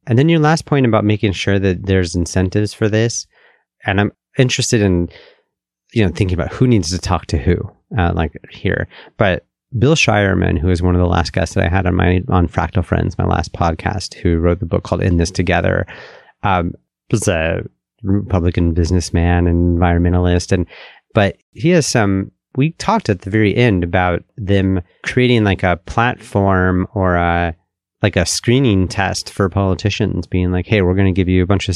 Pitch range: 90-105 Hz